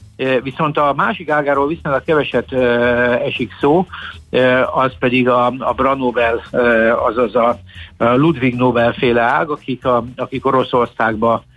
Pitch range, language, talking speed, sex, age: 120-135 Hz, Hungarian, 135 wpm, male, 60-79